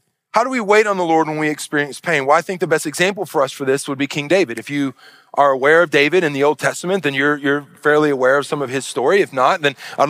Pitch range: 155-200 Hz